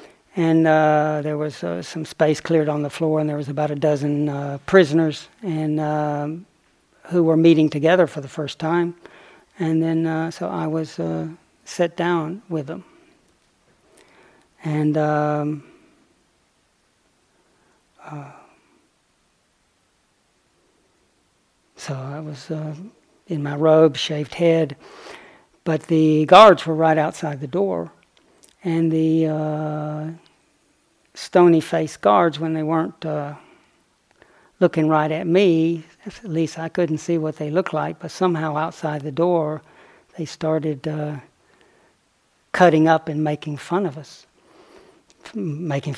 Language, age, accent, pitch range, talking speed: English, 40-59, American, 150-175 Hz, 130 wpm